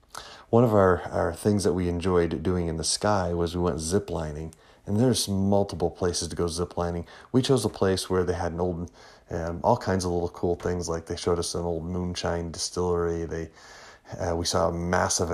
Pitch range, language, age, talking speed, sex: 85-95 Hz, English, 30-49, 205 wpm, male